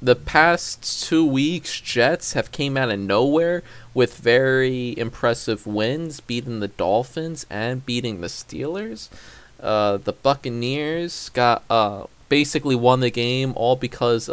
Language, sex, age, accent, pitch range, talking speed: English, male, 20-39, American, 115-145 Hz, 135 wpm